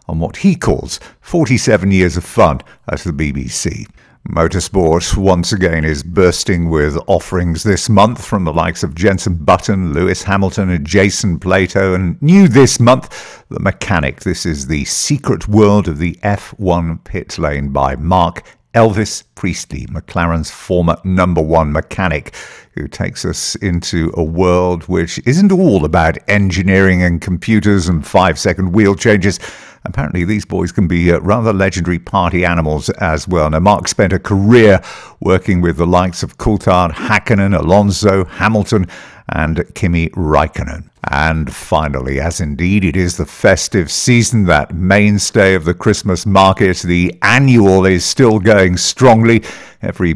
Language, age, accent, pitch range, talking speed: English, 50-69, British, 85-105 Hz, 145 wpm